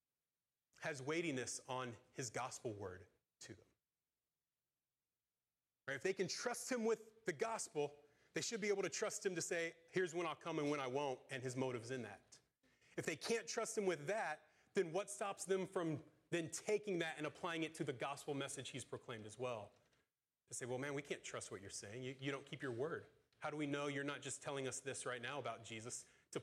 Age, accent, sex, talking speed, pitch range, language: 30-49, American, male, 220 wpm, 140-190 Hz, English